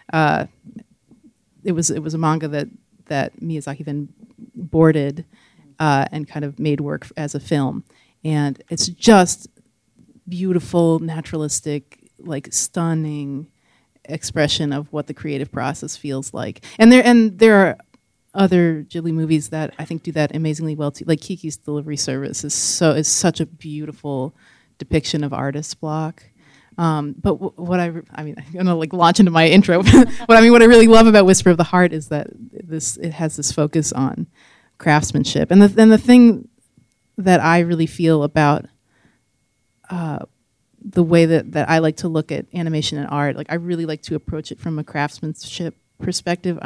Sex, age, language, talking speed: female, 30-49, English, 175 wpm